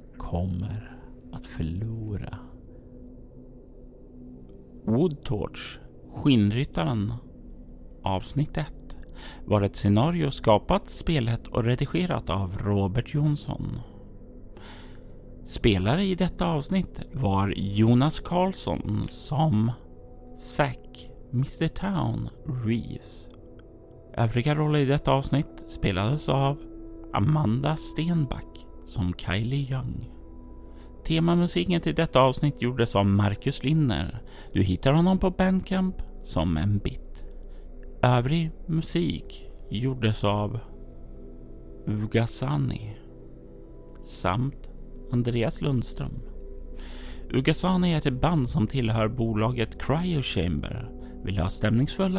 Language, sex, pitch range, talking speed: Swedish, male, 95-140 Hz, 85 wpm